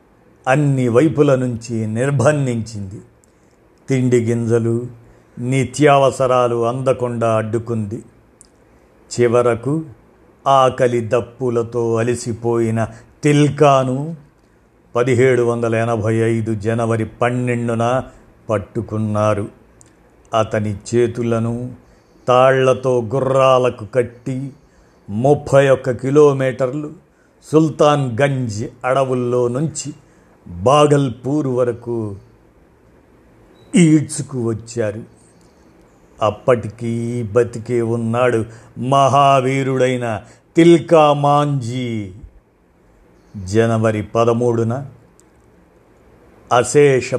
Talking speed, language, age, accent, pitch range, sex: 55 wpm, Telugu, 50-69, native, 115-140 Hz, male